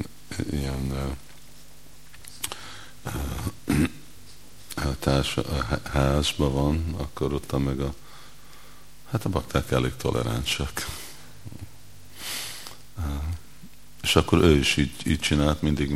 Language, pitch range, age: Hungarian, 70-80 Hz, 50-69